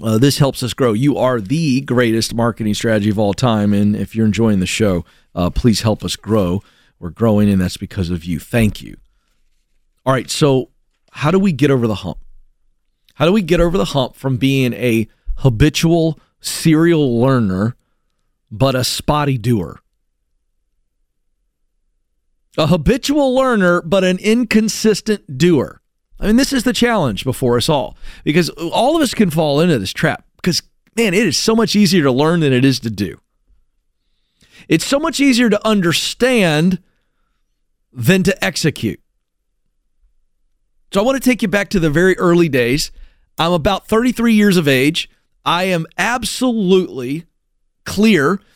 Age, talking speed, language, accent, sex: 40-59, 160 wpm, English, American, male